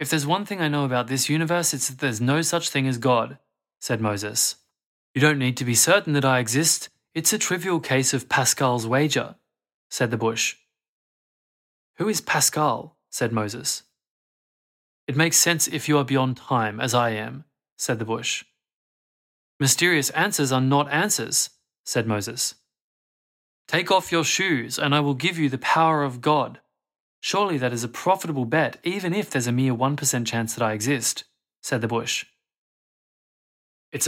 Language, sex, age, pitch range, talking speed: English, male, 20-39, 115-150 Hz, 170 wpm